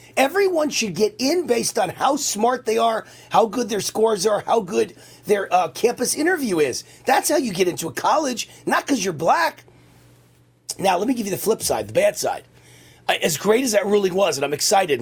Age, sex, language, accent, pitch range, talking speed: 40-59, male, English, American, 160-235 Hz, 210 wpm